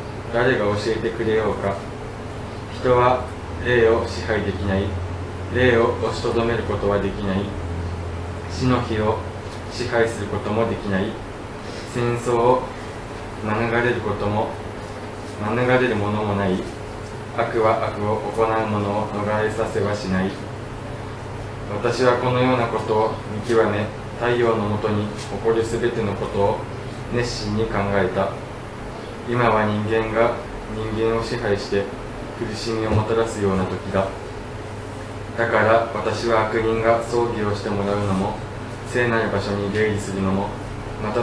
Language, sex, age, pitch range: Japanese, male, 20-39, 105-115 Hz